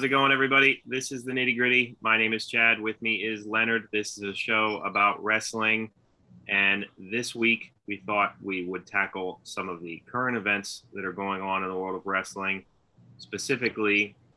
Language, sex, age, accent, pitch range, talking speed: English, male, 30-49, American, 95-110 Hz, 190 wpm